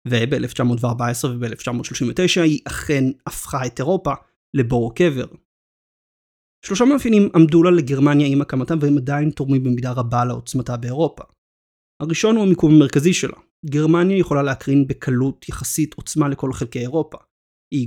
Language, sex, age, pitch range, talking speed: Hebrew, male, 30-49, 125-155 Hz, 130 wpm